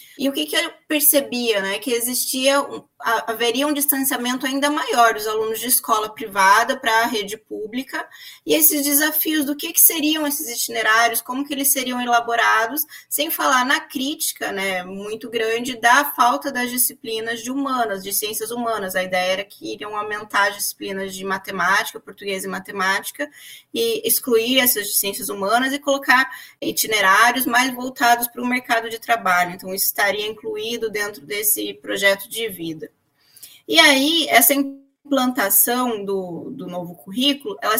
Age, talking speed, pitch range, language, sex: 20-39, 160 wpm, 205-275 Hz, Portuguese, female